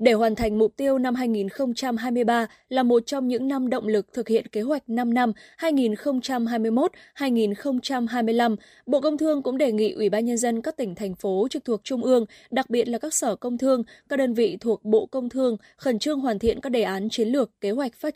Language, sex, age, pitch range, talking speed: Vietnamese, female, 20-39, 215-265 Hz, 215 wpm